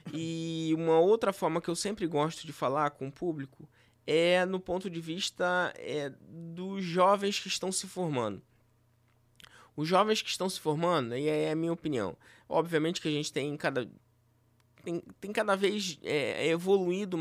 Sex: male